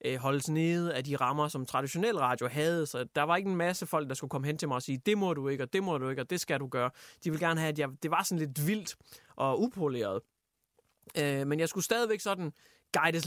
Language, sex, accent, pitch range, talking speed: Danish, male, native, 145-195 Hz, 260 wpm